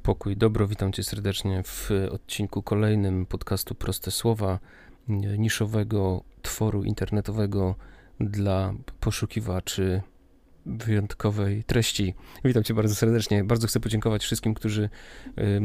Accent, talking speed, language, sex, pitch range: native, 105 wpm, Polish, male, 95-110 Hz